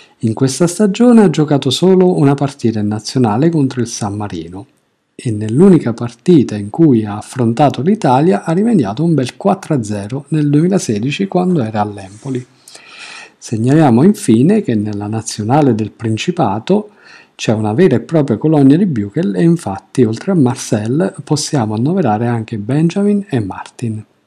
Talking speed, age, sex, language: 140 wpm, 50-69, male, Italian